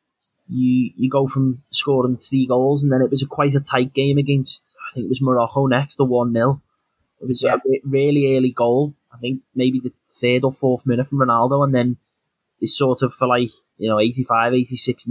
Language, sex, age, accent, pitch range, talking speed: English, male, 20-39, British, 120-135 Hz, 200 wpm